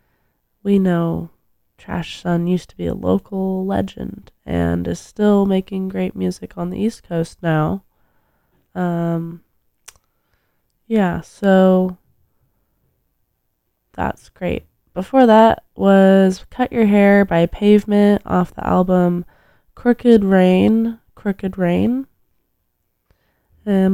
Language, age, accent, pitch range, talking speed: English, 20-39, American, 170-215 Hz, 105 wpm